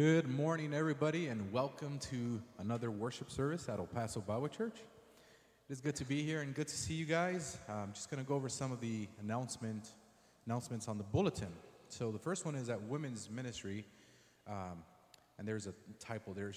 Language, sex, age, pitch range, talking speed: English, male, 30-49, 95-130 Hz, 200 wpm